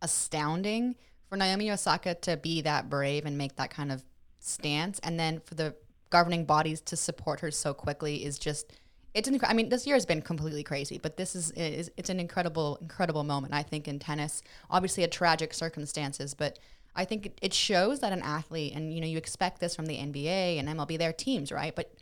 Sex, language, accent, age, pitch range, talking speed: female, English, American, 20-39, 150-185 Hz, 200 wpm